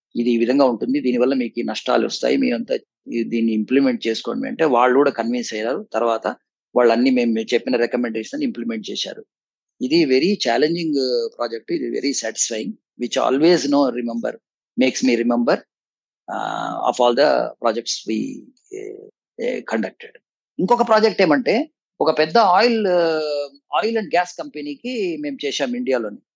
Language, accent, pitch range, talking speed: Telugu, native, 135-210 Hz, 125 wpm